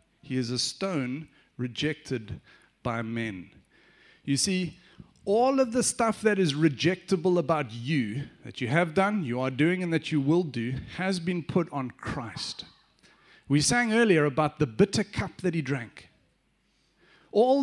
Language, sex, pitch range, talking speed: English, male, 145-215 Hz, 155 wpm